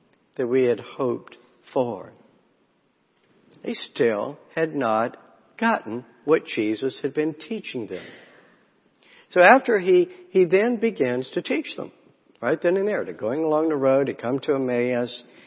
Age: 60-79